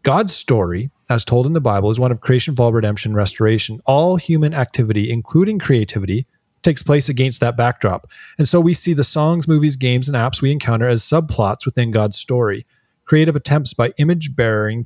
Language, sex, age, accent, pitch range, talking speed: English, male, 30-49, American, 110-135 Hz, 180 wpm